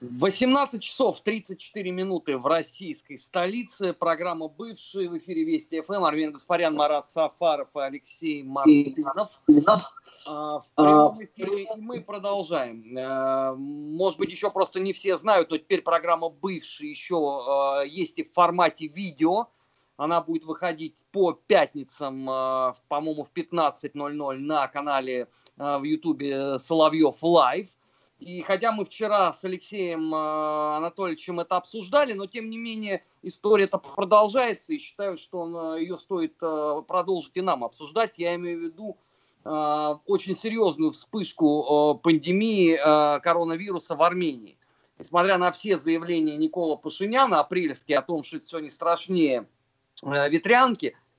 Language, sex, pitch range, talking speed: Russian, male, 150-195 Hz, 130 wpm